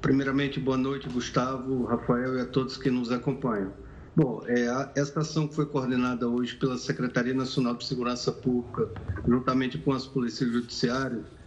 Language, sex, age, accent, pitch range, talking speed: Portuguese, male, 50-69, Brazilian, 130-155 Hz, 160 wpm